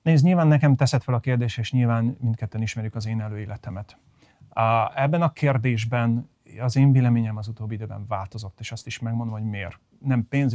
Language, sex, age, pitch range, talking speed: Hungarian, male, 30-49, 110-135 Hz, 190 wpm